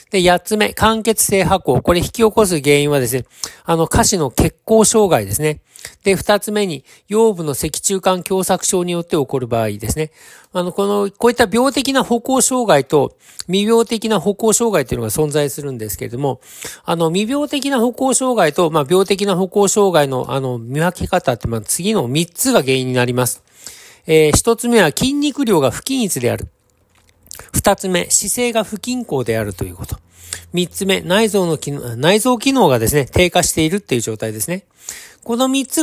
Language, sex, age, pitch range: Japanese, male, 50-69, 155-230 Hz